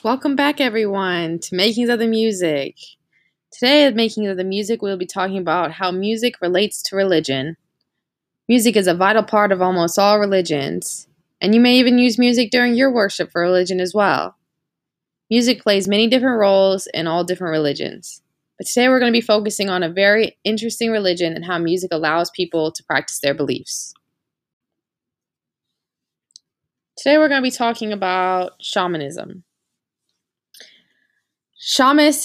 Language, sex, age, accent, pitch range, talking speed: English, female, 20-39, American, 170-220 Hz, 155 wpm